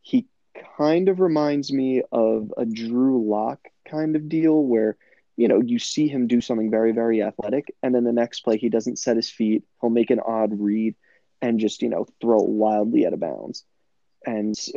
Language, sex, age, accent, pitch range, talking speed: English, male, 20-39, American, 105-125 Hz, 195 wpm